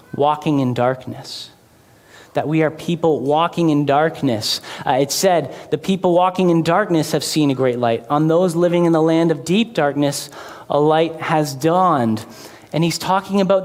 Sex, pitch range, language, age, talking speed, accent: male, 145-170 Hz, English, 30-49, 175 wpm, American